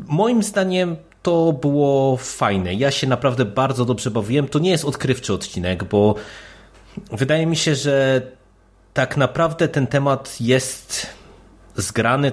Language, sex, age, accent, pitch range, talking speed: Polish, male, 30-49, native, 105-125 Hz, 130 wpm